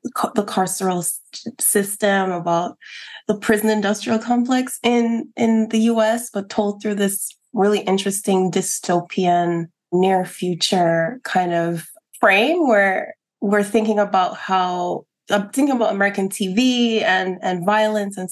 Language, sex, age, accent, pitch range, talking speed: English, female, 20-39, American, 195-235 Hz, 125 wpm